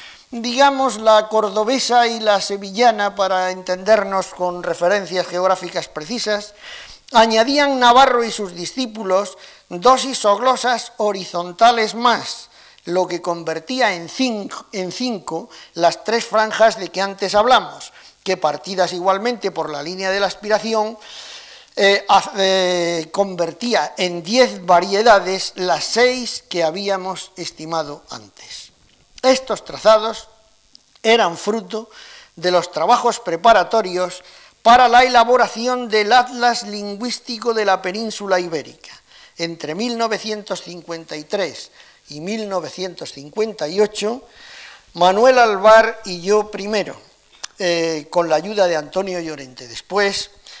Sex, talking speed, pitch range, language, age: male, 105 wpm, 180-230 Hz, Spanish, 50-69